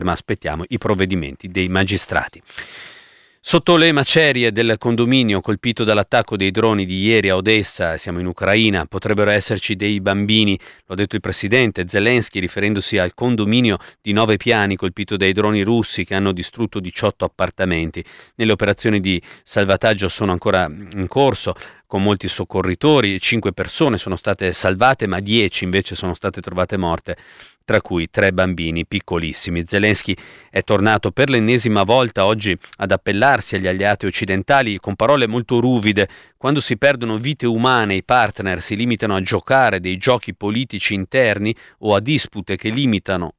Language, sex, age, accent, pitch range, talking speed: Italian, male, 40-59, native, 95-120 Hz, 155 wpm